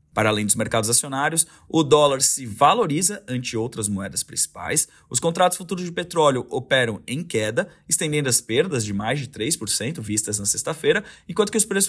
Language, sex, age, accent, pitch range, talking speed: Portuguese, male, 20-39, Brazilian, 115-165 Hz, 175 wpm